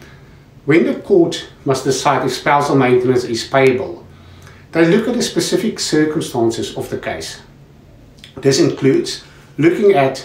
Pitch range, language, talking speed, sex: 125-160 Hz, English, 135 wpm, male